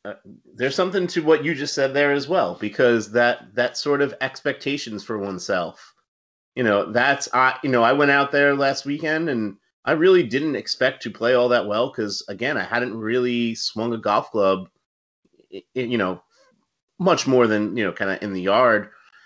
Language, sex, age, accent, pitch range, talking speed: English, male, 30-49, American, 100-125 Hz, 195 wpm